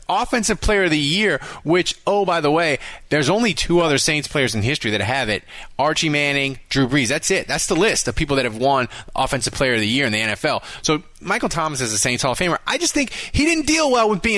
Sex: male